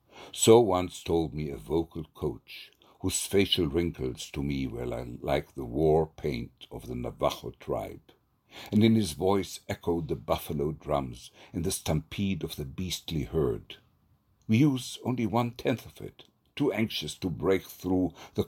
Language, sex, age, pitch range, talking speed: English, male, 60-79, 75-100 Hz, 155 wpm